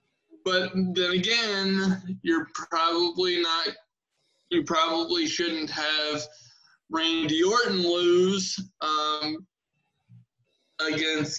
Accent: American